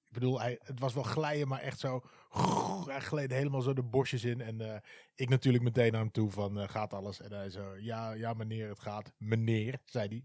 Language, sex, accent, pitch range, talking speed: Dutch, male, Dutch, 105-125 Hz, 230 wpm